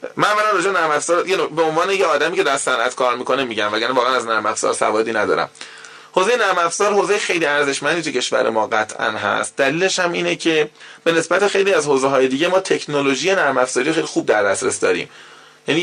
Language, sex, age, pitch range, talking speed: Persian, male, 20-39, 135-215 Hz, 195 wpm